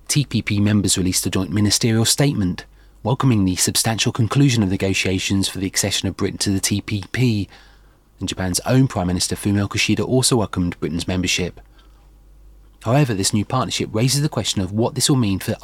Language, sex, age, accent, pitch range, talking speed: English, male, 30-49, British, 95-115 Hz, 175 wpm